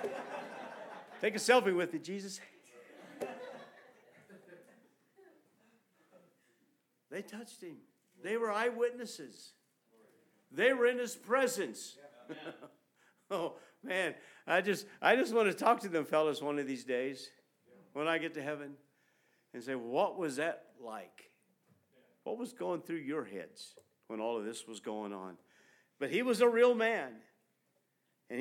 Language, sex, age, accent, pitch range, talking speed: English, male, 50-69, American, 155-225 Hz, 135 wpm